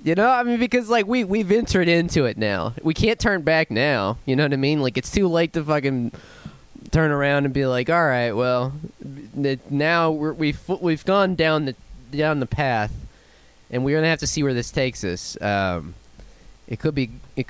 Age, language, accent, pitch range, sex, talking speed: 20-39, English, American, 115-165 Hz, male, 205 wpm